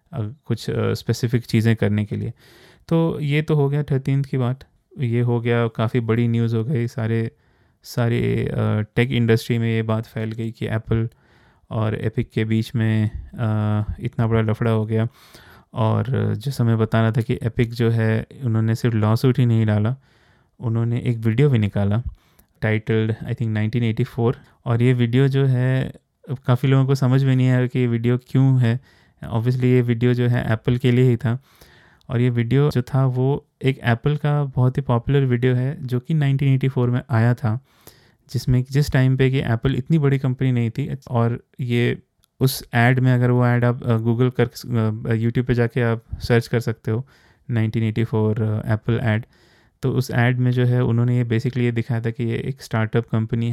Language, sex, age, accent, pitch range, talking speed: Hindi, male, 20-39, native, 115-130 Hz, 185 wpm